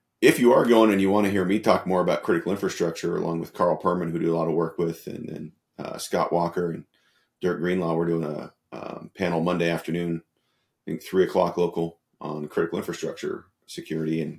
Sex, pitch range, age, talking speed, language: male, 85-90 Hz, 30-49, 215 wpm, English